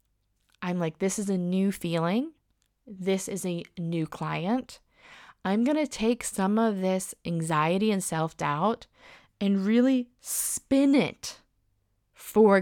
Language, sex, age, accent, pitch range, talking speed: English, female, 20-39, American, 160-205 Hz, 130 wpm